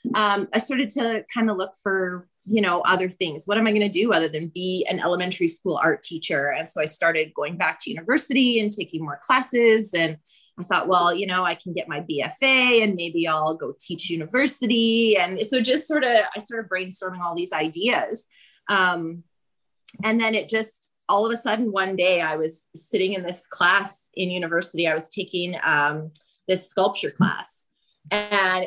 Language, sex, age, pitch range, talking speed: English, female, 20-39, 180-255 Hz, 195 wpm